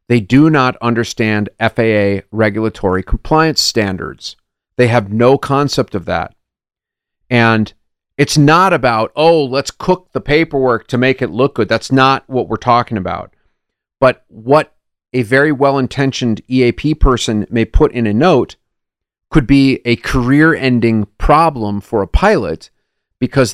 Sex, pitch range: male, 110-140 Hz